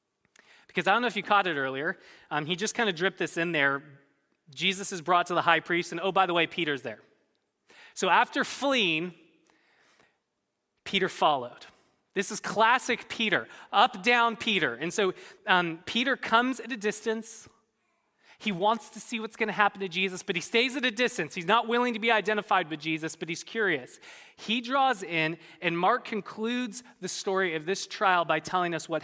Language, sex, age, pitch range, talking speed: English, male, 20-39, 170-240 Hz, 195 wpm